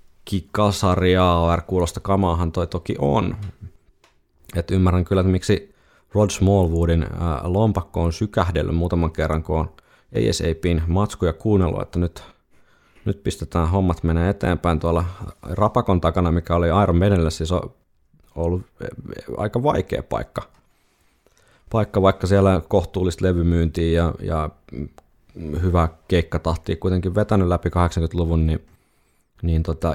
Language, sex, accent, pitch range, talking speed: Finnish, male, native, 80-95 Hz, 120 wpm